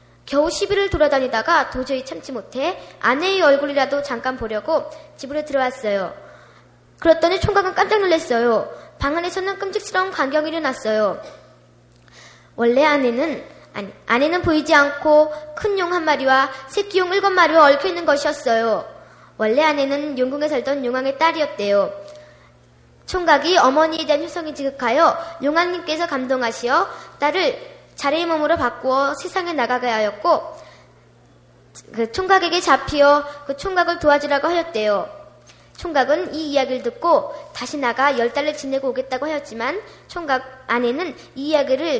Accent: native